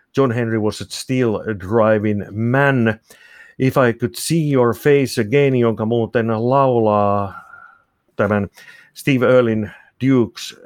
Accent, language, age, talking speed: native, Finnish, 50-69, 120 wpm